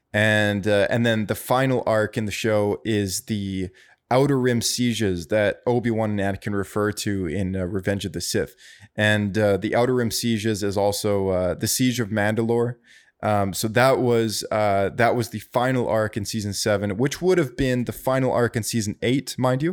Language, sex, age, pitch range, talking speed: English, male, 20-39, 100-120 Hz, 200 wpm